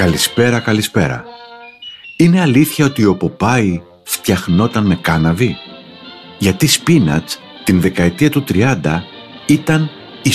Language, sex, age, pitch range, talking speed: Greek, male, 60-79, 95-140 Hz, 105 wpm